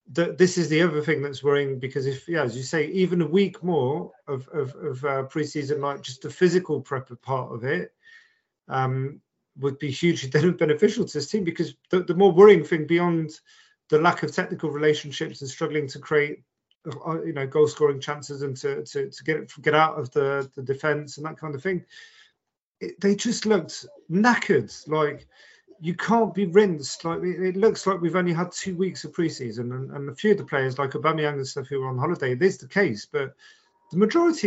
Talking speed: 210 wpm